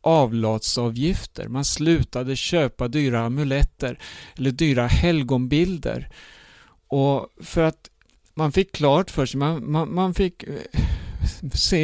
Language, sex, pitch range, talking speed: Swedish, male, 130-160 Hz, 110 wpm